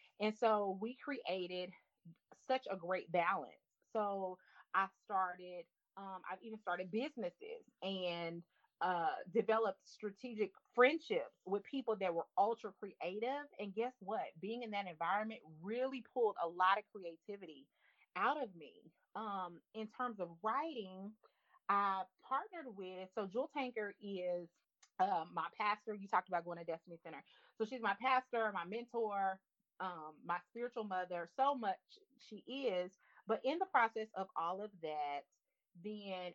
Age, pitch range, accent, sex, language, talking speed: 30-49, 185-255 Hz, American, female, English, 145 wpm